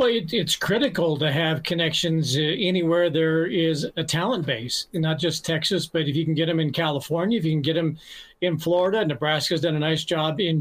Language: English